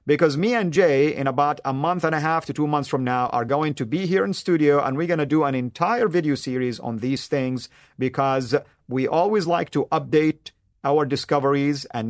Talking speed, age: 220 wpm, 50-69